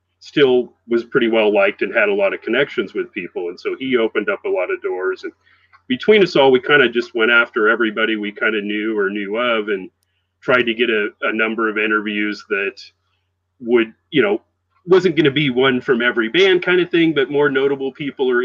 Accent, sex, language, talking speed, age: American, male, English, 225 wpm, 40-59